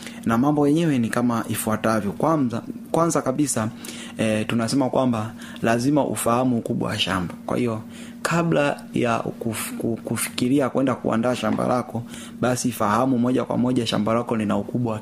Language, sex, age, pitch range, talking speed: Swahili, male, 30-49, 110-150 Hz, 150 wpm